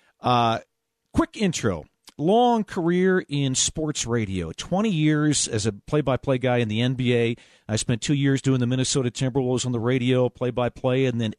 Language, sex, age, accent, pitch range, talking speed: English, male, 40-59, American, 115-140 Hz, 165 wpm